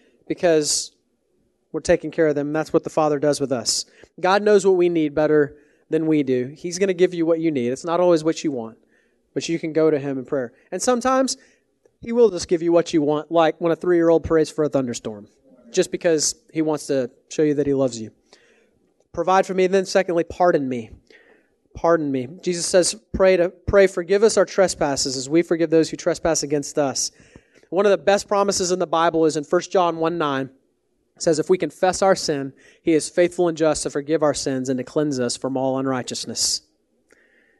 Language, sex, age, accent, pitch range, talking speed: English, male, 30-49, American, 145-185 Hz, 215 wpm